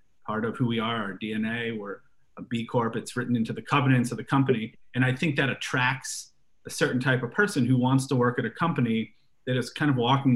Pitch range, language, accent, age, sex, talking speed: 115-135 Hz, English, American, 30-49, male, 240 wpm